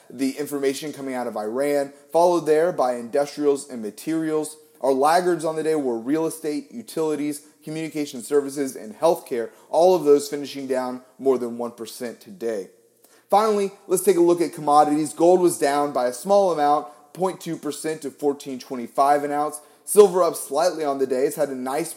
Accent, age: American, 30-49